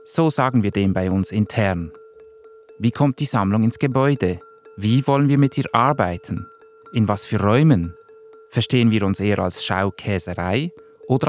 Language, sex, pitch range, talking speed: German, male, 105-150 Hz, 160 wpm